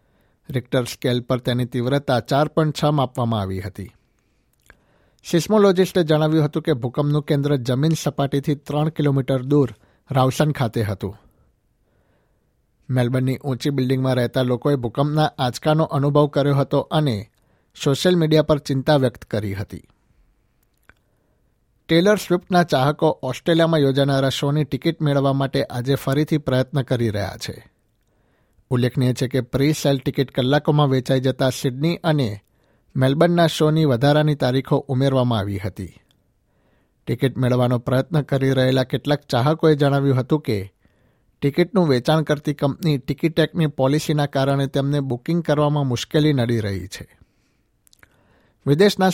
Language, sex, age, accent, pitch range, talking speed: Gujarati, male, 60-79, native, 125-150 Hz, 120 wpm